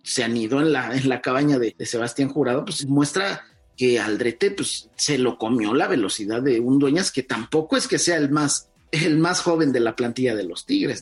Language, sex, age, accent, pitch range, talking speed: Spanish, male, 40-59, Mexican, 125-170 Hz, 220 wpm